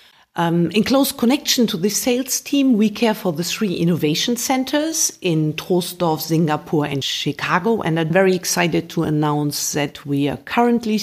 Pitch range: 150-195 Hz